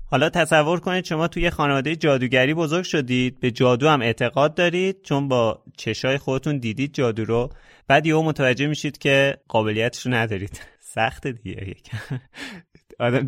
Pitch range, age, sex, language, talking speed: 115-150 Hz, 30-49, male, Persian, 140 wpm